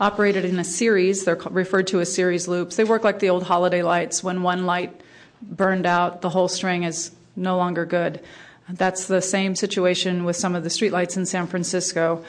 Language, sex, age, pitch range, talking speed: English, female, 40-59, 175-200 Hz, 200 wpm